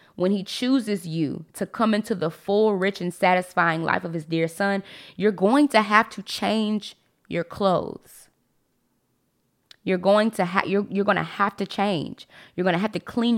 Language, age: English, 20-39